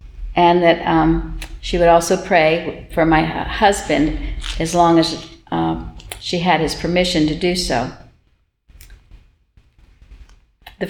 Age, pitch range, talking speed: 60-79, 160-185 Hz, 120 wpm